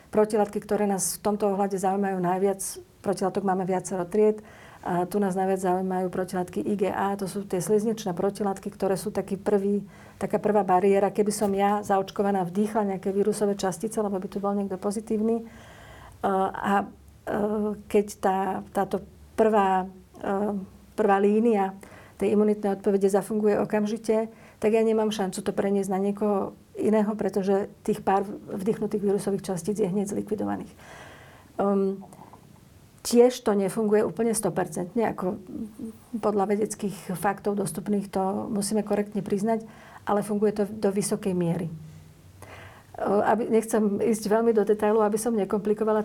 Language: Slovak